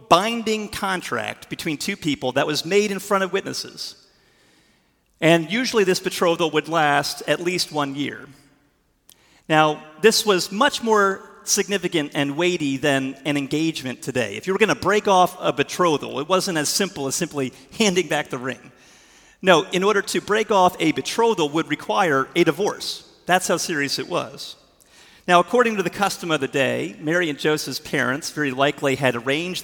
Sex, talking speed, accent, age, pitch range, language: male, 175 wpm, American, 40-59, 140-185 Hz, English